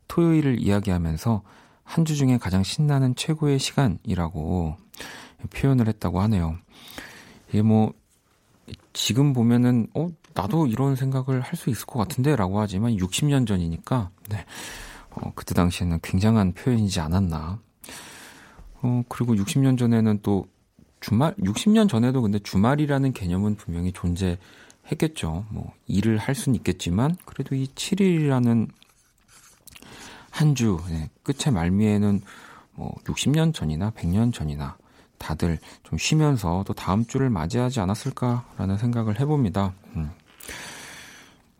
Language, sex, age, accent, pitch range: Korean, male, 40-59, native, 95-135 Hz